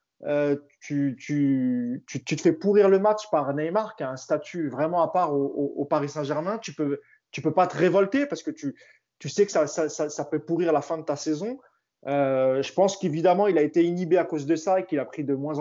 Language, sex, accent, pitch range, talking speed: French, male, French, 145-190 Hz, 255 wpm